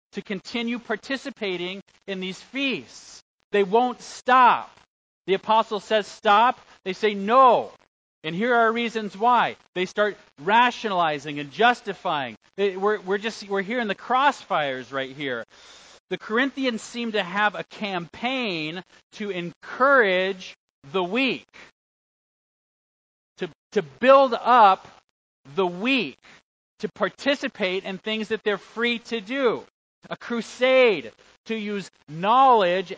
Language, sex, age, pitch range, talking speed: English, male, 40-59, 175-230 Hz, 125 wpm